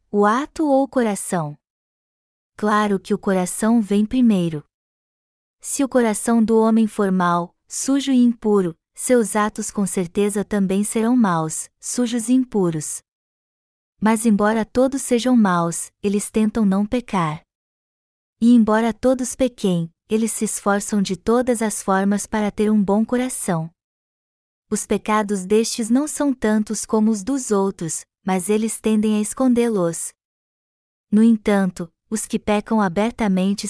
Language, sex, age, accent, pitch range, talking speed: Portuguese, female, 20-39, Brazilian, 200-235 Hz, 135 wpm